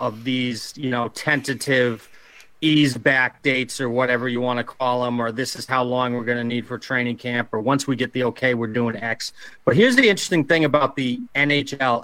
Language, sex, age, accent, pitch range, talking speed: English, male, 30-49, American, 125-155 Hz, 220 wpm